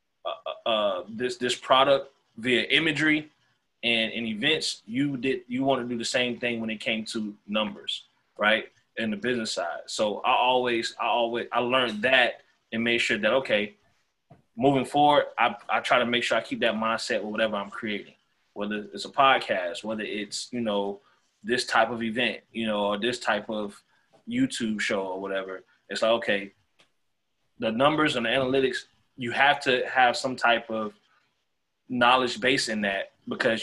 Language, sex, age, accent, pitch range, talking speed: English, male, 20-39, American, 110-130 Hz, 180 wpm